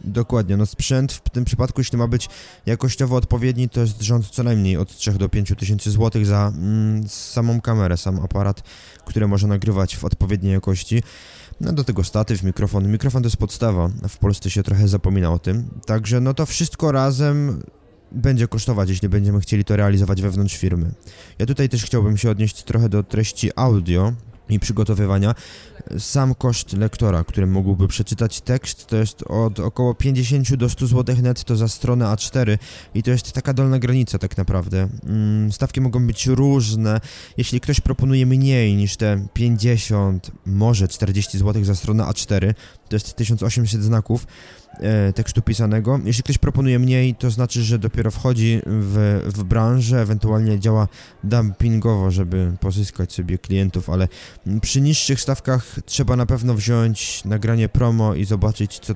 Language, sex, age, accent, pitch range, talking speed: Polish, male, 20-39, native, 100-120 Hz, 160 wpm